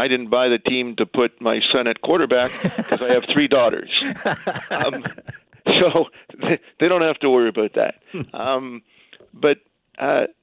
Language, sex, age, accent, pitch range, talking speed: English, male, 50-69, American, 115-135 Hz, 160 wpm